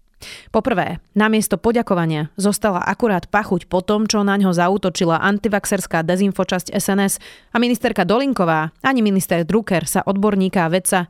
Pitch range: 180-215 Hz